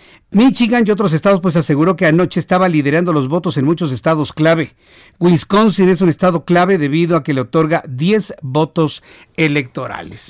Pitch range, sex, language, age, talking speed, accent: 145-180 Hz, male, Spanish, 50-69, 170 wpm, Mexican